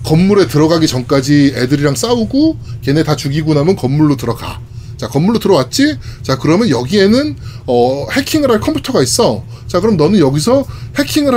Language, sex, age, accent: Korean, male, 20-39, native